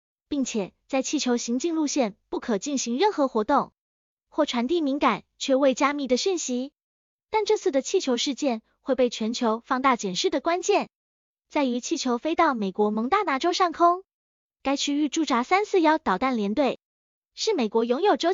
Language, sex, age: Chinese, female, 20-39